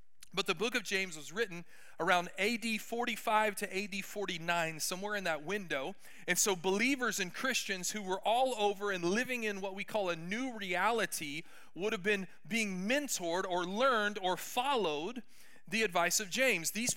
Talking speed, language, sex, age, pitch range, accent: 175 wpm, English, male, 40-59, 185-245 Hz, American